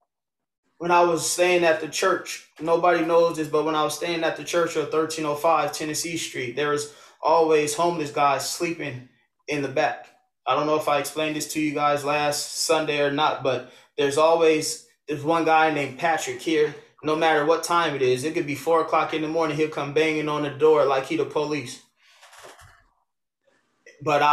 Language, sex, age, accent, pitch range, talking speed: English, male, 20-39, American, 135-160 Hz, 195 wpm